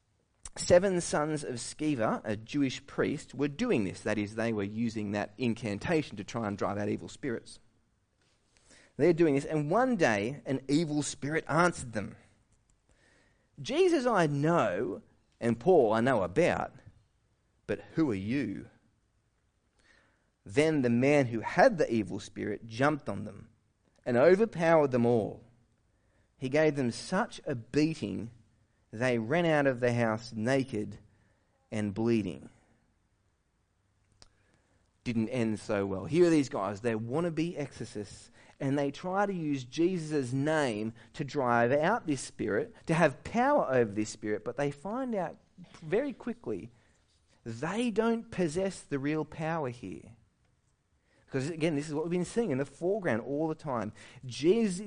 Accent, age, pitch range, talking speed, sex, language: Australian, 30-49, 105-155 Hz, 145 wpm, male, English